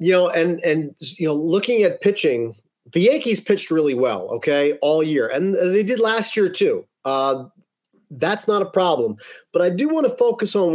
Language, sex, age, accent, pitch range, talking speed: English, male, 40-59, American, 150-210 Hz, 195 wpm